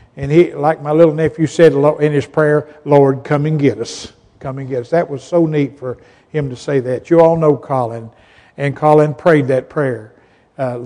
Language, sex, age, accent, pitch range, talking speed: English, male, 60-79, American, 140-205 Hz, 210 wpm